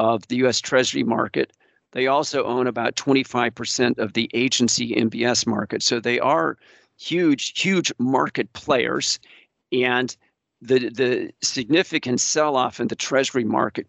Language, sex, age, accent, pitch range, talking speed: English, male, 50-69, American, 115-130 Hz, 135 wpm